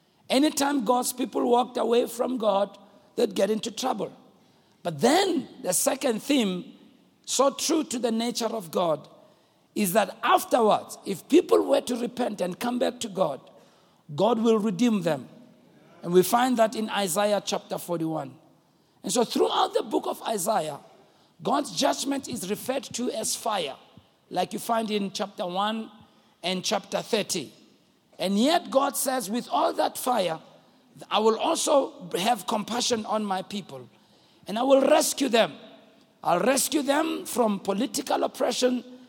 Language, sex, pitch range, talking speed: English, male, 215-275 Hz, 150 wpm